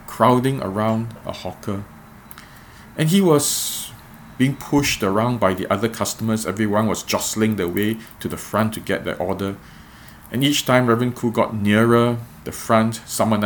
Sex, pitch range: male, 110-145 Hz